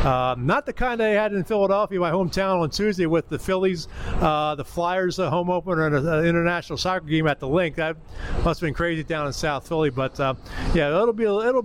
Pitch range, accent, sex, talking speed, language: 165-215 Hz, American, male, 225 wpm, English